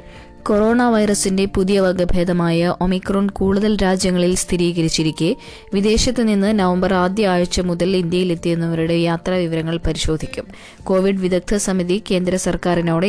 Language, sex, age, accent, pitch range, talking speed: Malayalam, female, 20-39, native, 170-195 Hz, 100 wpm